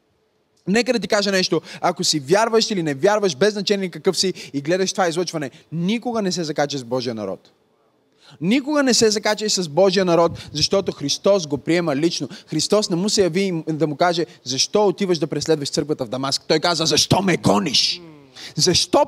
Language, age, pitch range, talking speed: Bulgarian, 20-39, 160-230 Hz, 185 wpm